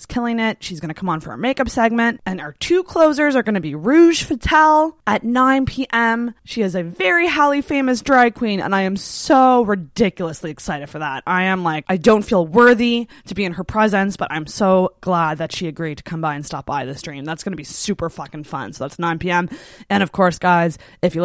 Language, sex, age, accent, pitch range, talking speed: English, female, 20-39, American, 175-245 Hz, 235 wpm